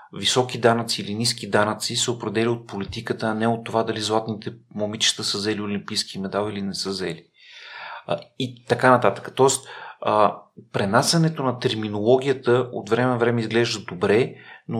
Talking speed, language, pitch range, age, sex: 155 wpm, Bulgarian, 110-125 Hz, 40-59, male